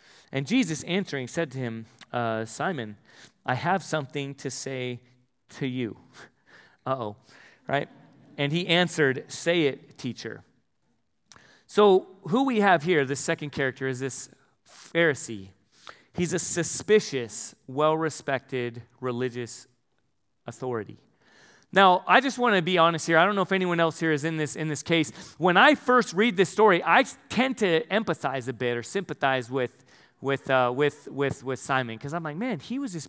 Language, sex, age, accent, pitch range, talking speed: English, male, 40-59, American, 135-180 Hz, 160 wpm